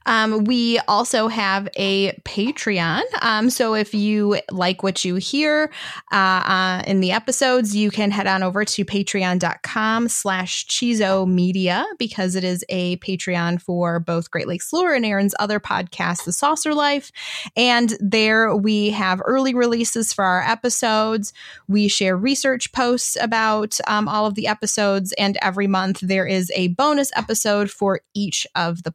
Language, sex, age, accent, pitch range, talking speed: English, female, 20-39, American, 190-235 Hz, 155 wpm